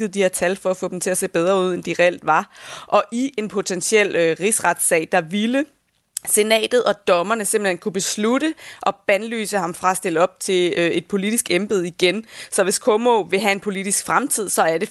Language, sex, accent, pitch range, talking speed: Danish, female, native, 180-210 Hz, 215 wpm